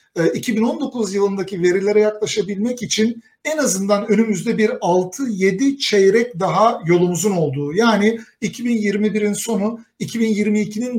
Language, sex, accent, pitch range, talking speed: Turkish, male, native, 180-225 Hz, 100 wpm